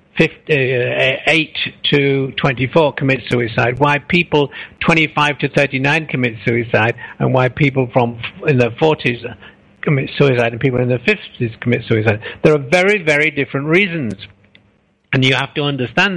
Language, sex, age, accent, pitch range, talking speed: English, male, 60-79, British, 125-160 Hz, 145 wpm